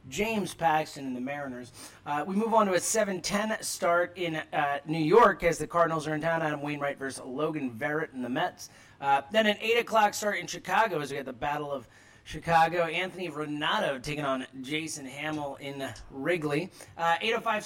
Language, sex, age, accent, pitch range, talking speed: English, male, 30-49, American, 140-180 Hz, 195 wpm